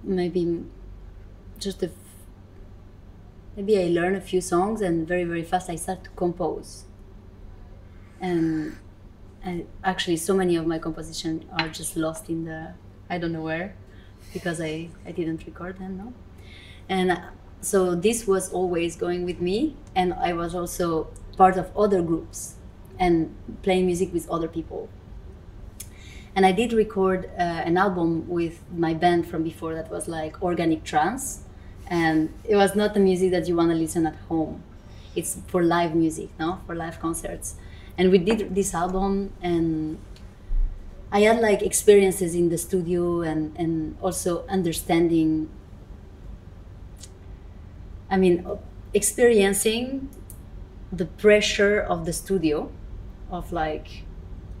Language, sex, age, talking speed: English, female, 20-39, 140 wpm